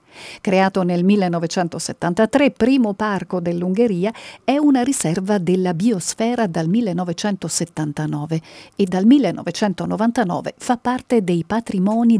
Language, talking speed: Italian, 100 wpm